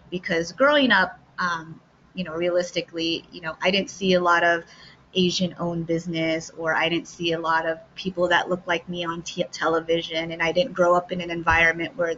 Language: English